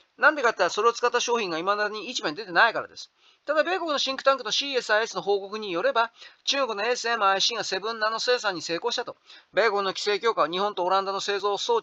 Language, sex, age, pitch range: Japanese, male, 40-59, 215-270 Hz